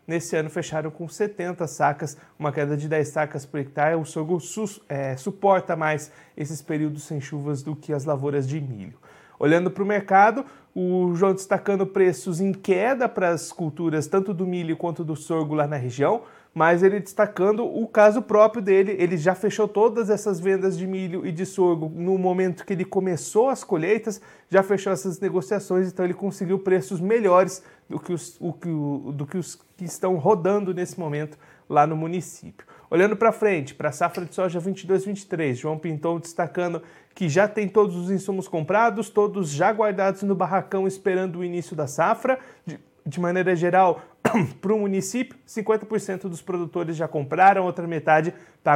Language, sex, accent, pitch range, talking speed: Portuguese, male, Brazilian, 160-200 Hz, 175 wpm